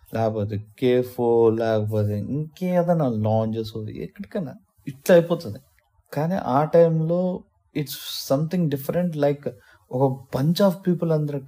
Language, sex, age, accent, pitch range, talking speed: Telugu, male, 20-39, native, 115-155 Hz, 110 wpm